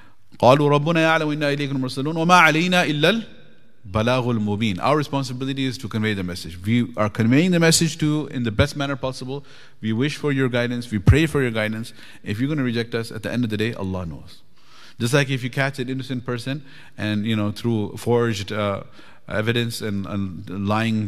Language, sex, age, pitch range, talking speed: English, male, 30-49, 105-130 Hz, 175 wpm